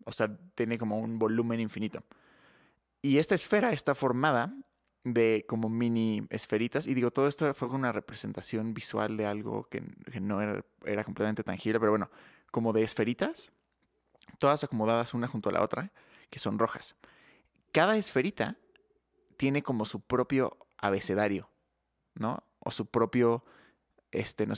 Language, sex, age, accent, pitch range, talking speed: Spanish, male, 20-39, Mexican, 105-130 Hz, 145 wpm